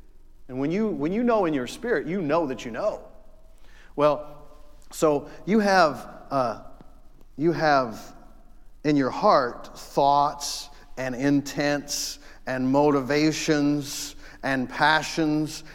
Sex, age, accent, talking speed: male, 40-59, American, 120 wpm